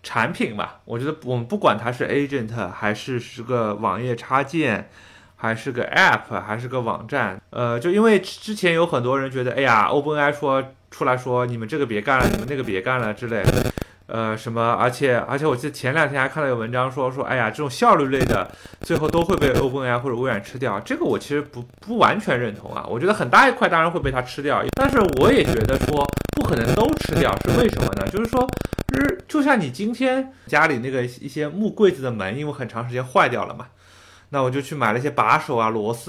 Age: 20-39